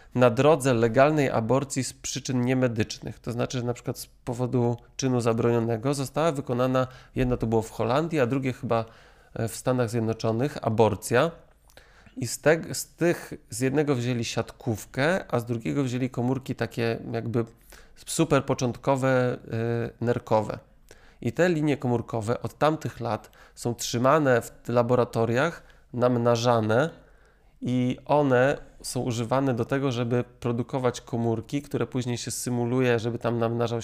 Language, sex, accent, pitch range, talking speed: Polish, male, native, 115-135 Hz, 135 wpm